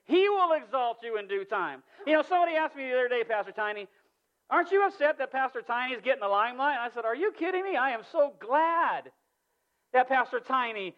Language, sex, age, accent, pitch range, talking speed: English, male, 50-69, American, 245-335 Hz, 215 wpm